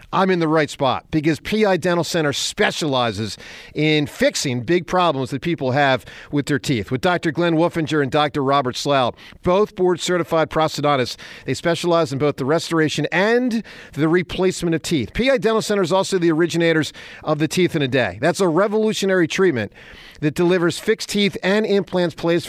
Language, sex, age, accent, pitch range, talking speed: English, male, 50-69, American, 130-175 Hz, 180 wpm